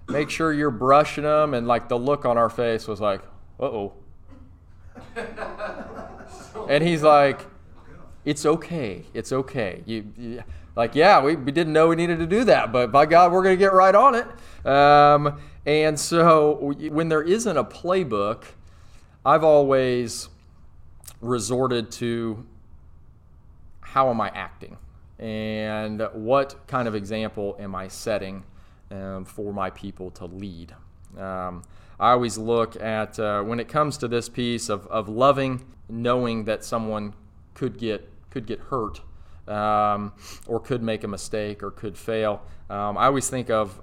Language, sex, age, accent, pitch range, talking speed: English, male, 30-49, American, 95-125 Hz, 150 wpm